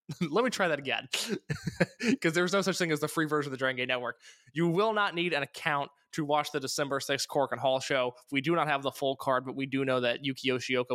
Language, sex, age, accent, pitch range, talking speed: English, male, 20-39, American, 135-175 Hz, 265 wpm